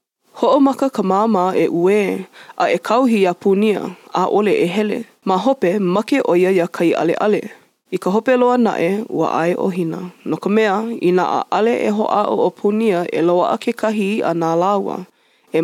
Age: 20-39